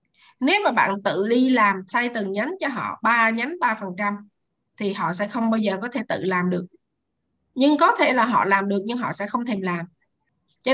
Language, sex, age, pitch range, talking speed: Vietnamese, female, 20-39, 205-280 Hz, 220 wpm